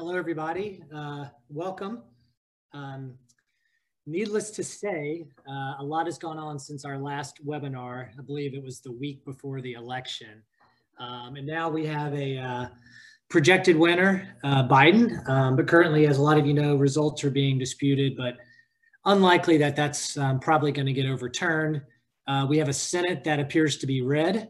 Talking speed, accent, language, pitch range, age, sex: 175 wpm, American, English, 130-165 Hz, 20-39, male